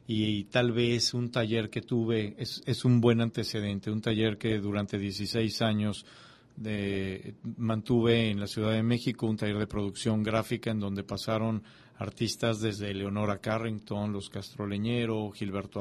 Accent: Mexican